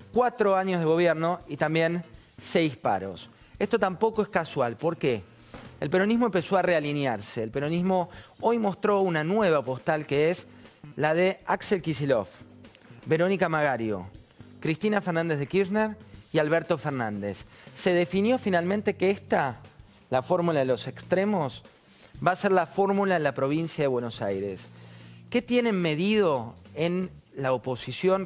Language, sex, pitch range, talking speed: Spanish, male, 130-185 Hz, 145 wpm